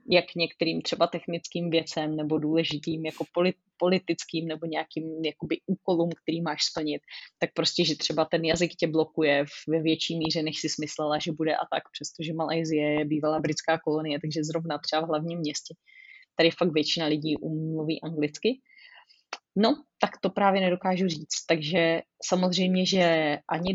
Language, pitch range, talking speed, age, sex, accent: Czech, 155-180 Hz, 155 wpm, 20-39, female, native